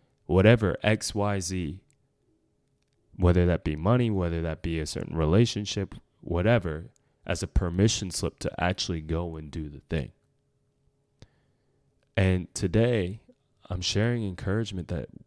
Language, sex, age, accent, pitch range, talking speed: English, male, 20-39, American, 85-110 Hz, 125 wpm